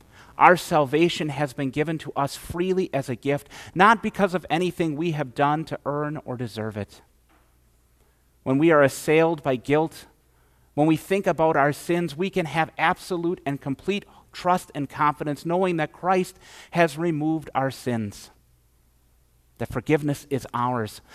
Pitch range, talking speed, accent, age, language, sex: 125-170 Hz, 155 wpm, American, 40-59, English, male